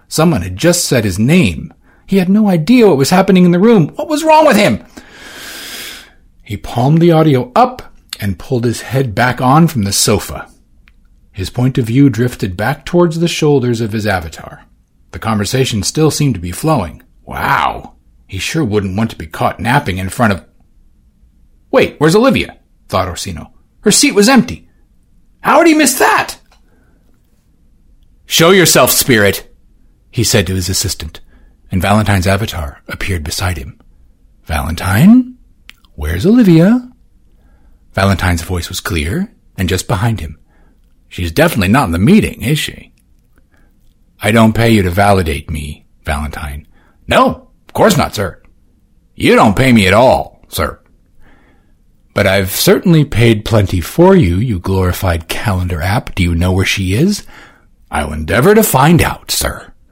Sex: male